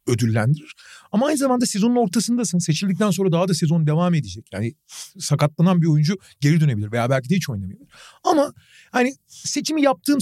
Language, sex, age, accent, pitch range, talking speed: Turkish, male, 40-59, native, 140-200 Hz, 160 wpm